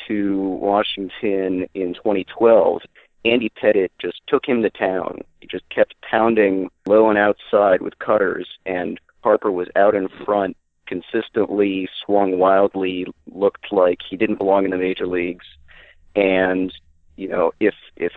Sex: male